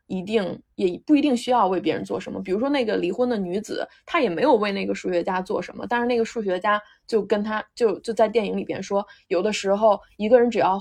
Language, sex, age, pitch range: Chinese, female, 20-39, 190-240 Hz